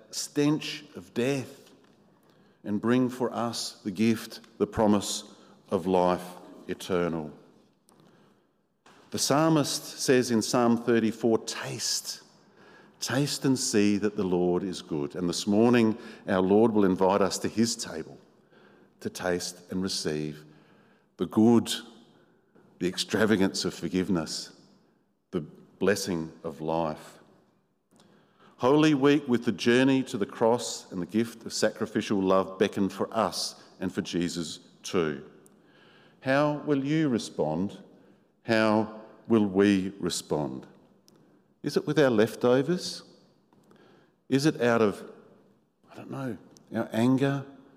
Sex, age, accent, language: male, 50-69, Australian, English